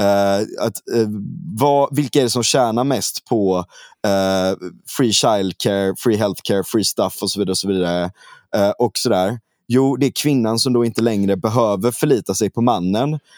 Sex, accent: male, native